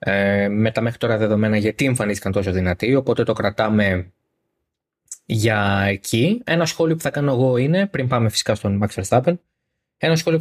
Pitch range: 105-135 Hz